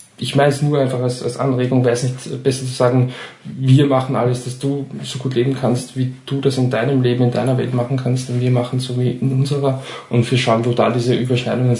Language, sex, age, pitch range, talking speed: German, male, 20-39, 120-130 Hz, 245 wpm